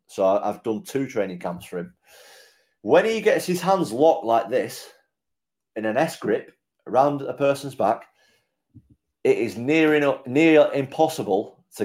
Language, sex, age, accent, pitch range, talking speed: English, male, 40-59, British, 105-145 Hz, 150 wpm